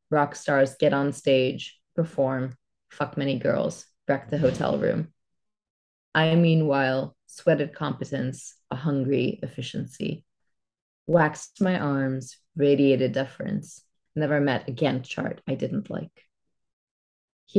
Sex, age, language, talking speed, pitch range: female, 20-39, English, 115 wpm, 135-170 Hz